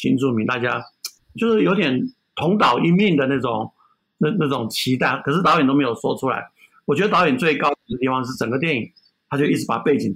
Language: Chinese